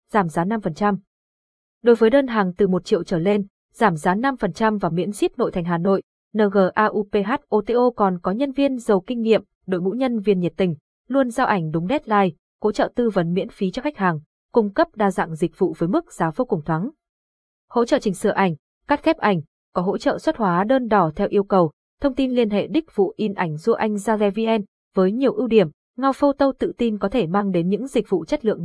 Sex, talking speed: female, 225 wpm